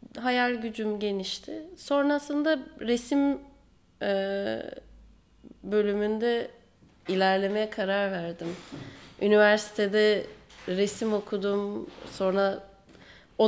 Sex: female